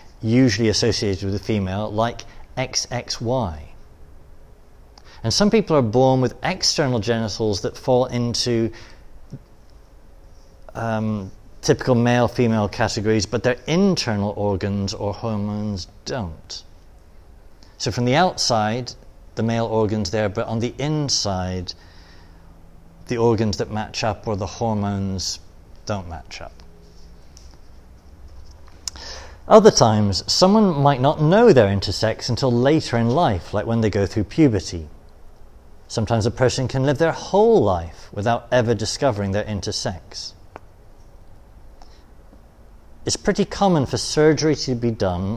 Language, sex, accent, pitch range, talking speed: English, male, British, 90-125 Hz, 120 wpm